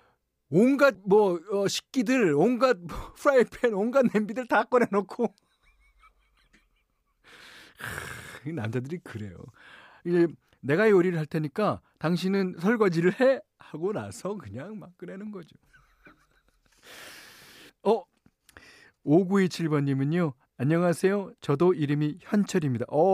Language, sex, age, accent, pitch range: Korean, male, 40-59, native, 105-175 Hz